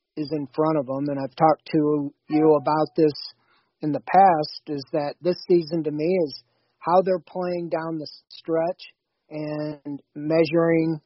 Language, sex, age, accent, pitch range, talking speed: English, male, 40-59, American, 140-160 Hz, 165 wpm